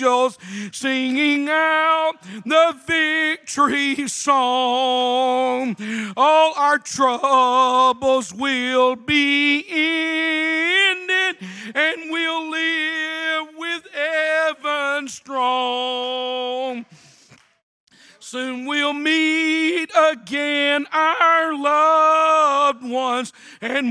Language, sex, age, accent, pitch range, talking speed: English, male, 50-69, American, 260-315 Hz, 65 wpm